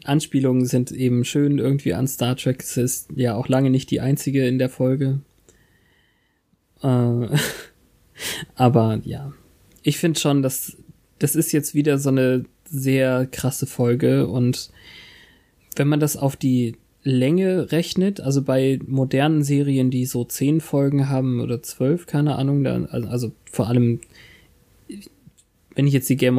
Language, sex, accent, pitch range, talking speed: German, male, German, 125-140 Hz, 145 wpm